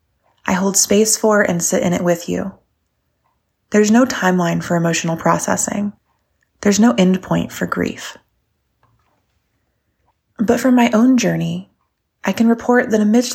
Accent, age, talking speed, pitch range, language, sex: American, 20-39, 140 wpm, 170-210 Hz, English, female